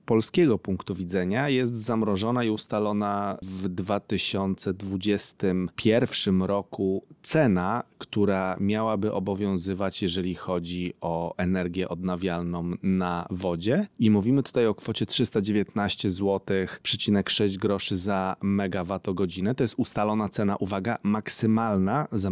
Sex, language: male, Polish